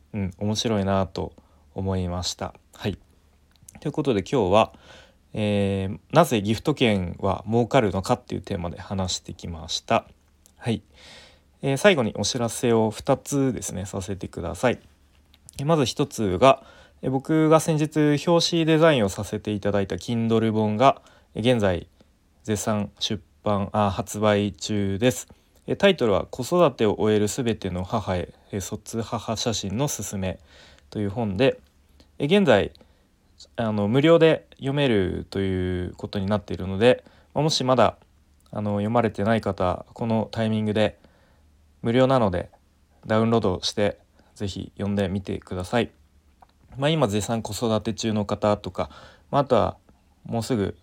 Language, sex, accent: Japanese, male, native